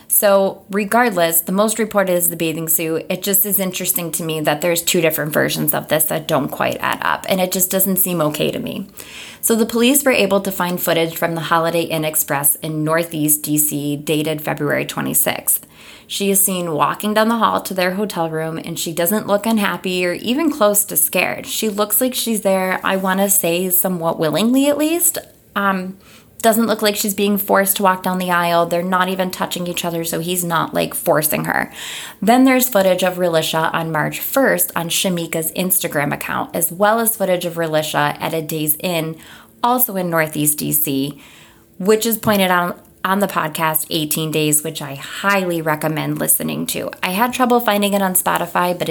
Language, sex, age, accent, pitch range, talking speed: English, female, 20-39, American, 160-200 Hz, 200 wpm